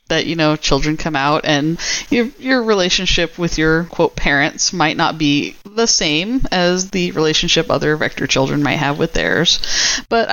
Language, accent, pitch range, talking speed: English, American, 140-175 Hz, 175 wpm